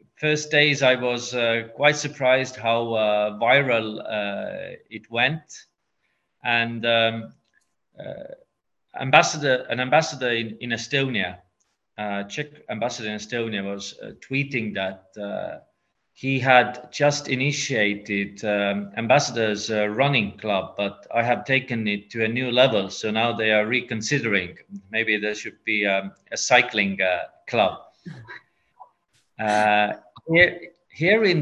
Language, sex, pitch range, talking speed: English, male, 105-135 Hz, 130 wpm